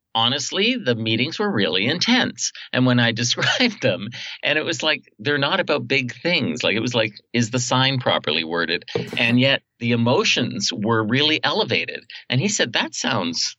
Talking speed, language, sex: 180 wpm, English, male